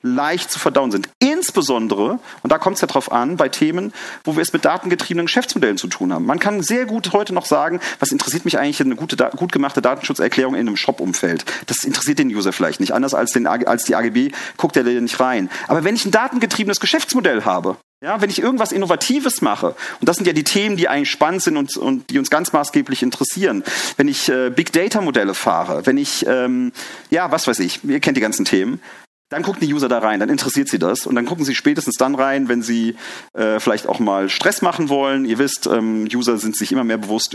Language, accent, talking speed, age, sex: German, German, 225 wpm, 40-59, male